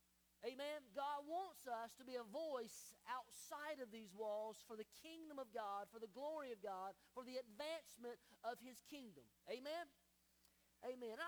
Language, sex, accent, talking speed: English, male, American, 160 wpm